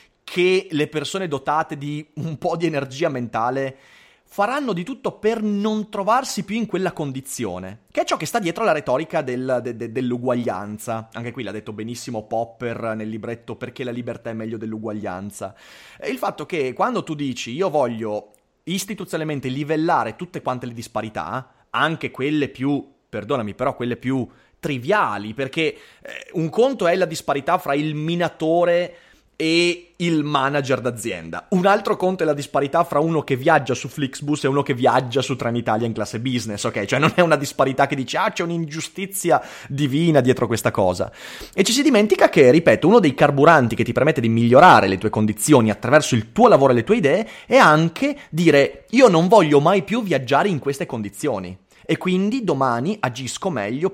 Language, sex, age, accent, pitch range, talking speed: Italian, male, 30-49, native, 120-170 Hz, 175 wpm